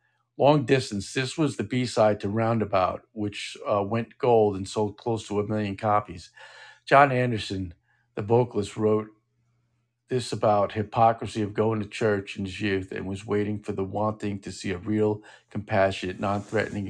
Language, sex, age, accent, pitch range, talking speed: English, male, 50-69, American, 100-120 Hz, 165 wpm